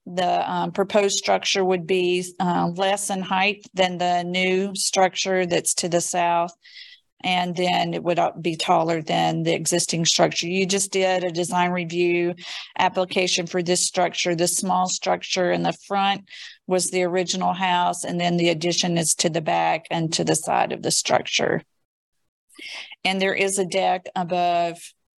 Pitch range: 175-190 Hz